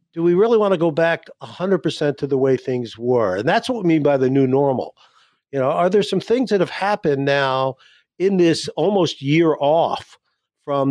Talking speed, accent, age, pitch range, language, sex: 210 wpm, American, 50-69, 140-170 Hz, English, male